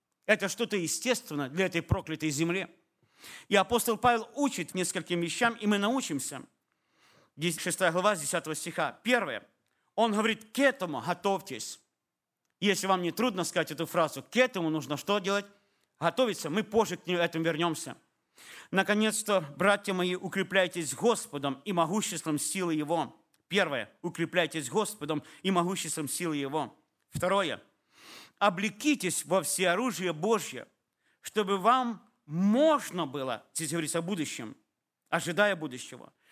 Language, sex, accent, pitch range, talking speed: Russian, male, native, 170-225 Hz, 125 wpm